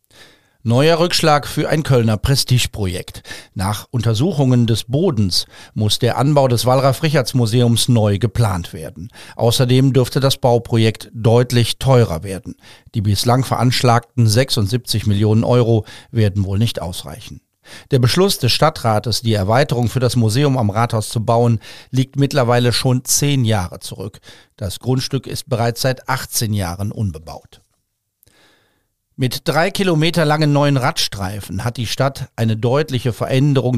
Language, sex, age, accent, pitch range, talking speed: German, male, 50-69, German, 105-130 Hz, 135 wpm